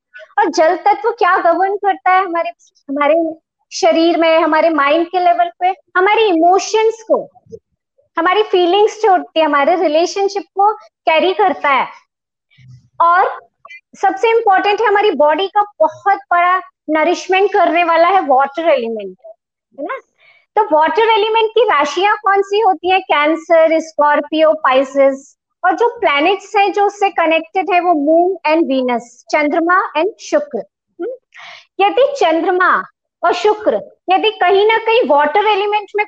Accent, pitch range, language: native, 315-405 Hz, Hindi